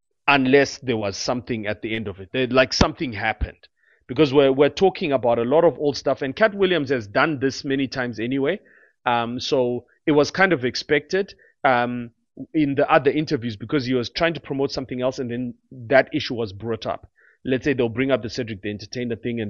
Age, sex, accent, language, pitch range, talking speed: 30-49, male, South African, English, 120-150 Hz, 215 wpm